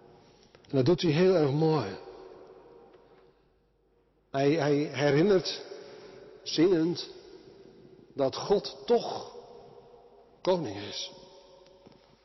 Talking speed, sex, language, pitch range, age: 80 wpm, male, Dutch, 135-190 Hz, 60-79